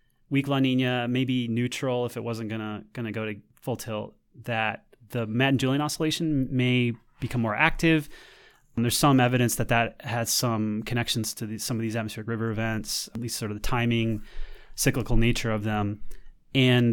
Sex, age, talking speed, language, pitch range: male, 30-49, 180 wpm, English, 110-135 Hz